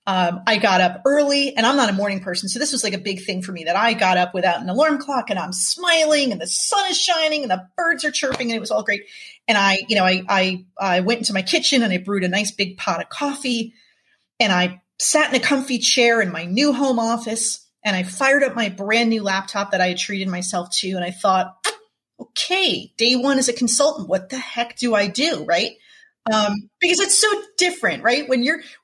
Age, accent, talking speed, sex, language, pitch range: 30-49, American, 240 wpm, female, English, 190-270 Hz